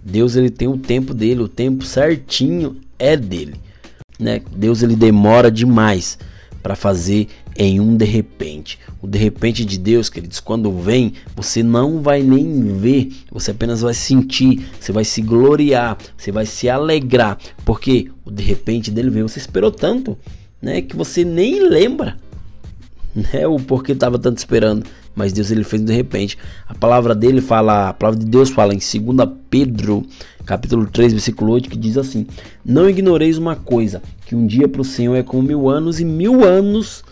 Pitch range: 105-135 Hz